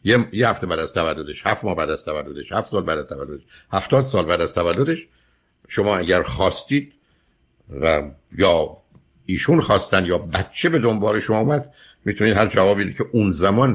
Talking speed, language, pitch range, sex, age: 170 wpm, Persian, 90-135 Hz, male, 60-79